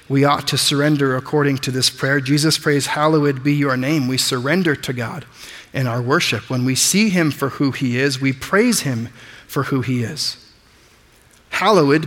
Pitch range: 130-160 Hz